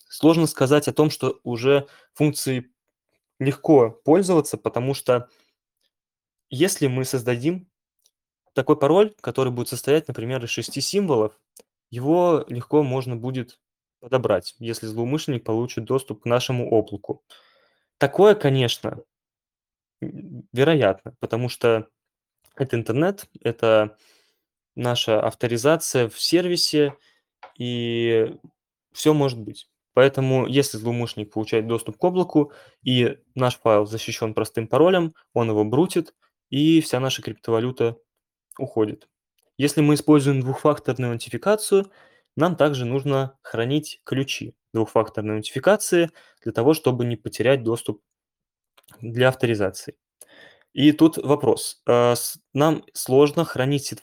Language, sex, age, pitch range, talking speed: Russian, male, 20-39, 115-150 Hz, 110 wpm